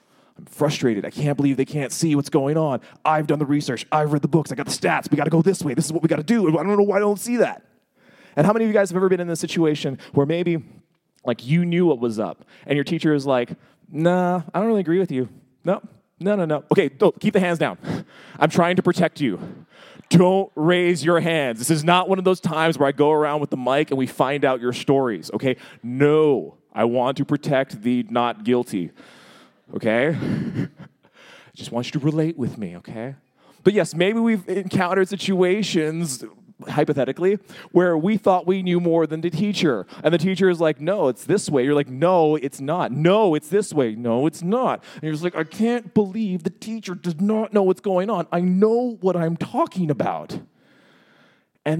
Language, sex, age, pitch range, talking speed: English, male, 20-39, 145-190 Hz, 225 wpm